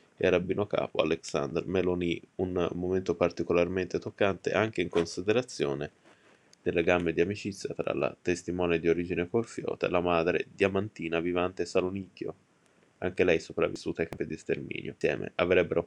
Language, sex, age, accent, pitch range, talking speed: Italian, male, 20-39, native, 85-100 Hz, 140 wpm